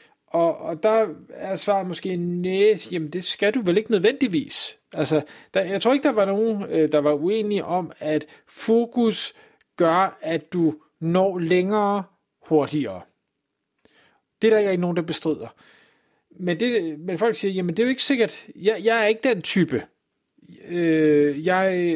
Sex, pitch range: male, 160-220 Hz